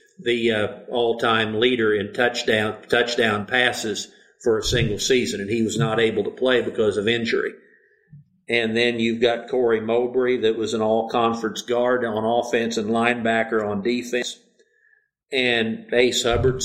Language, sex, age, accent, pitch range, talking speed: English, male, 50-69, American, 115-125 Hz, 150 wpm